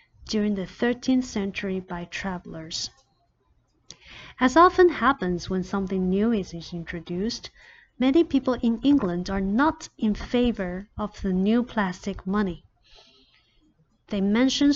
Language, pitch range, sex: Chinese, 190-260 Hz, female